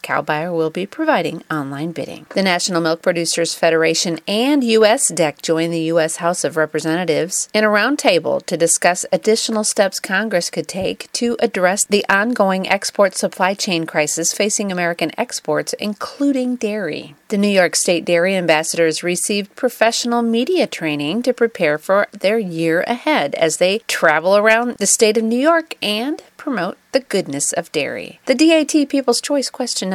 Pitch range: 165-235 Hz